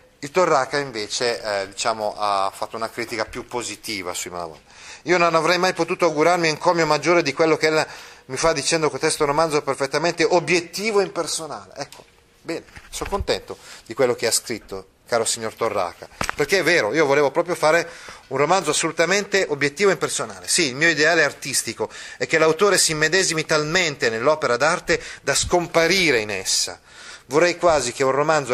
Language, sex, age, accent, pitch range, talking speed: Italian, male, 30-49, native, 125-175 Hz, 170 wpm